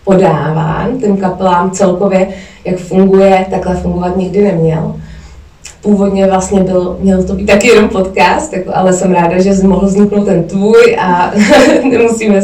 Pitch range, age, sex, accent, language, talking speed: 185-215 Hz, 20-39, female, native, Czech, 135 wpm